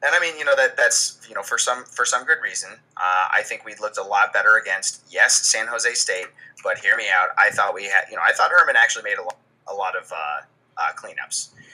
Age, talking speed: 20-39, 260 wpm